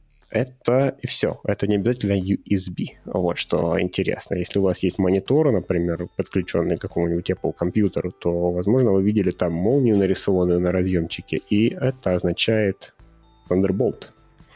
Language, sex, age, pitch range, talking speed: Russian, male, 20-39, 90-115 Hz, 140 wpm